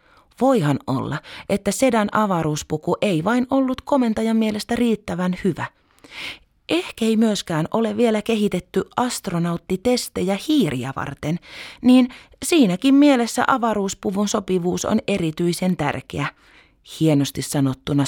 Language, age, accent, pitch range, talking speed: Finnish, 30-49, native, 145-215 Hz, 105 wpm